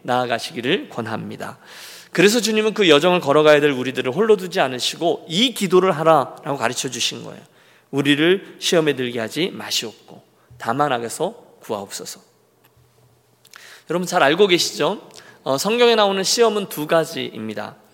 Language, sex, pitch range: Korean, male, 140-215 Hz